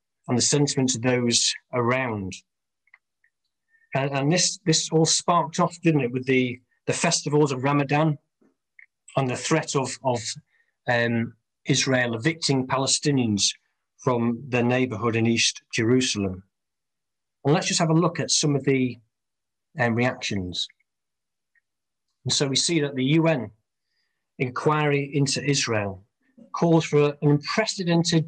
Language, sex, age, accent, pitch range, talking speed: English, male, 40-59, British, 120-160 Hz, 130 wpm